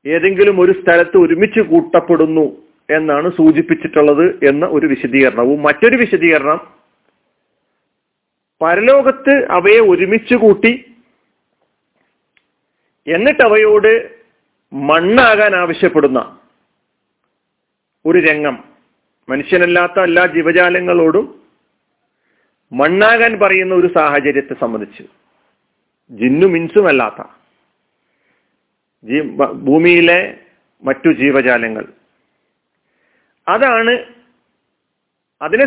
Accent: native